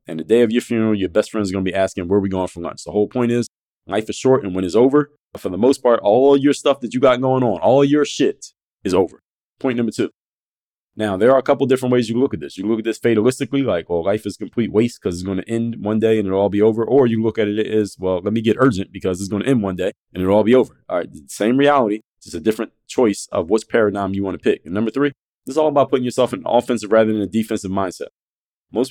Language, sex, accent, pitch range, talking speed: English, male, American, 100-125 Hz, 295 wpm